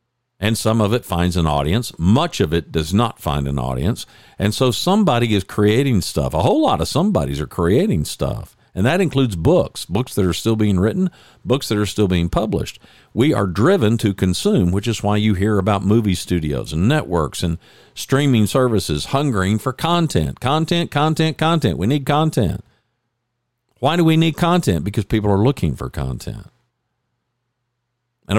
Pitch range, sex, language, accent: 90-120 Hz, male, English, American